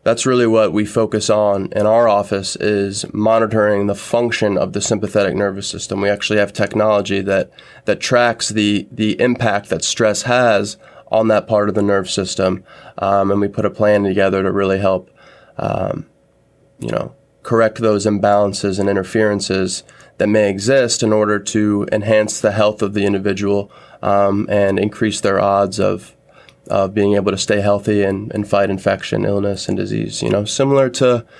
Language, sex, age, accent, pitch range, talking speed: English, male, 20-39, American, 100-115 Hz, 175 wpm